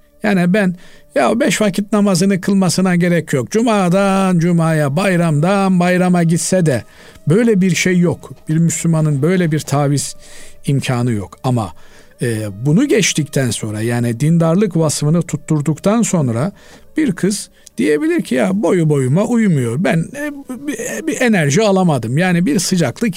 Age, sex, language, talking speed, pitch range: 50-69, male, Turkish, 135 wpm, 145-195 Hz